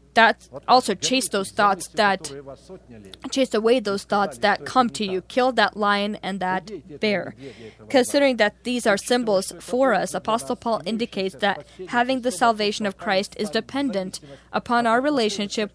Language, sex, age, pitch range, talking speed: English, female, 20-39, 195-235 Hz, 155 wpm